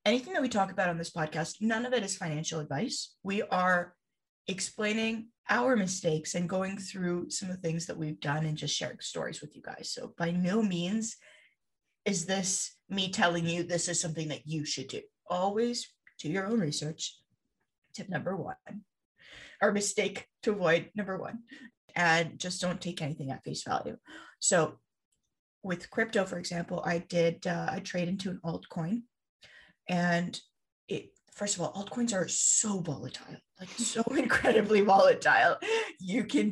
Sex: female